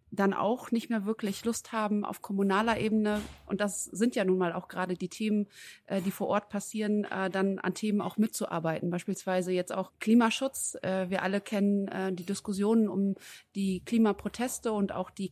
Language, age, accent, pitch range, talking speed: German, 30-49, German, 200-235 Hz, 170 wpm